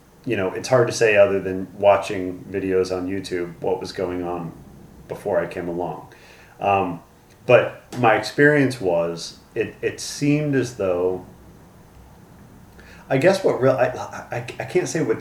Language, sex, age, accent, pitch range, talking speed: English, male, 30-49, American, 90-110 Hz, 160 wpm